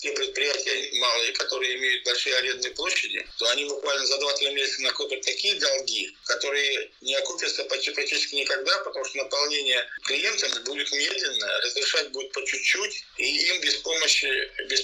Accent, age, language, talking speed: native, 50-69, Russian, 155 wpm